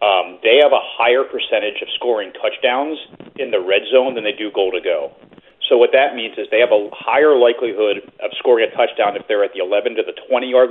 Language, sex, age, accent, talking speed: English, male, 30-49, American, 200 wpm